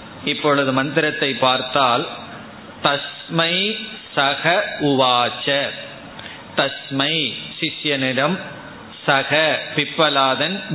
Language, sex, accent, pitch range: Tamil, male, native, 140-170 Hz